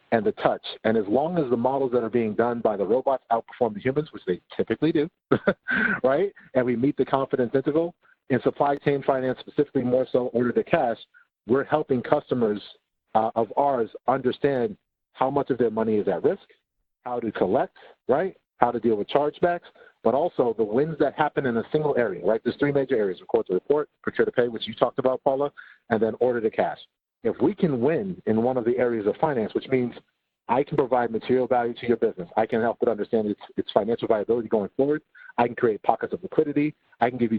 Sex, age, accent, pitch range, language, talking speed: male, 50-69, American, 115-145 Hz, English, 220 wpm